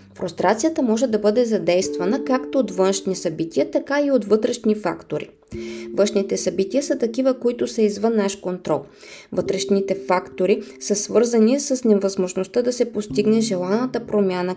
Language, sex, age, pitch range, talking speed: Bulgarian, female, 20-39, 180-220 Hz, 140 wpm